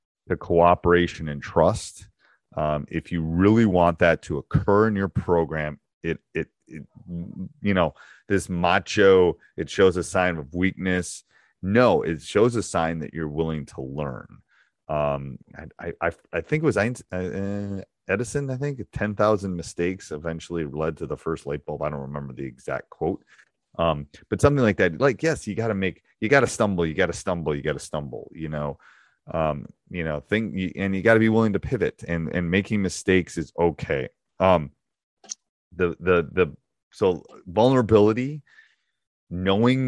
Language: English